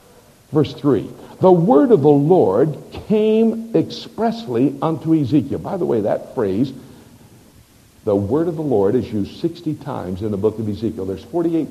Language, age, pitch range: English, 60-79, 110-165 Hz